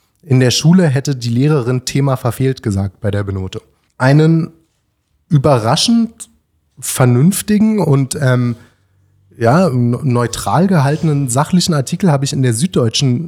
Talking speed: 120 wpm